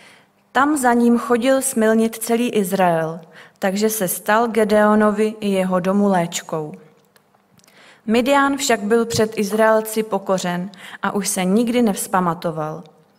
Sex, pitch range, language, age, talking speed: female, 195-230 Hz, Czech, 30-49, 120 wpm